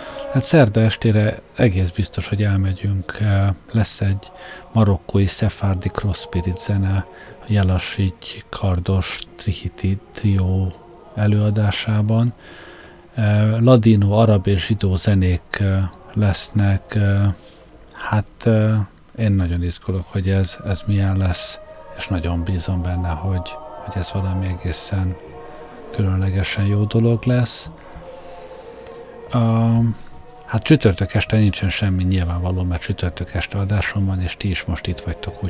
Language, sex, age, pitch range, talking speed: Hungarian, male, 50-69, 95-110 Hz, 110 wpm